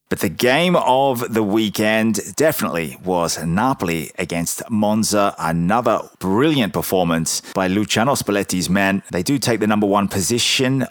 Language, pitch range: English, 85-100 Hz